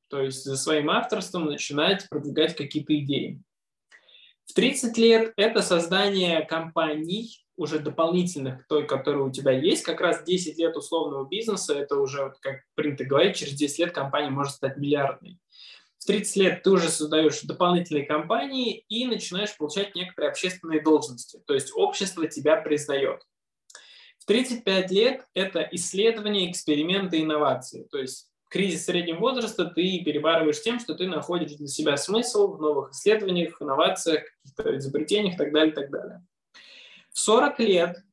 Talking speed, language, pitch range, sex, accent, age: 150 wpm, Russian, 150-205 Hz, male, native, 20-39